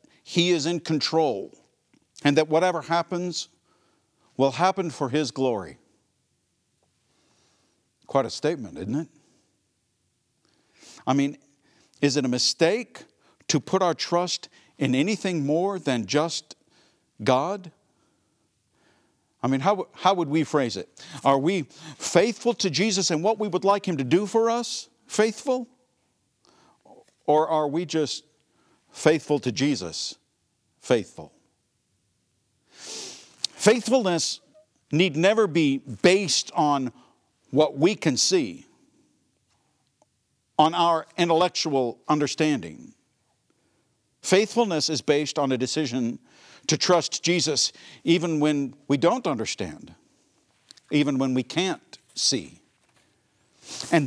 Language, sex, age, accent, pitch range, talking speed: English, male, 50-69, American, 140-185 Hz, 110 wpm